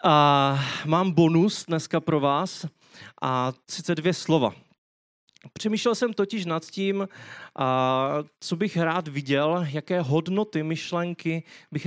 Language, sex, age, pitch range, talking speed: Czech, male, 30-49, 140-170 Hz, 110 wpm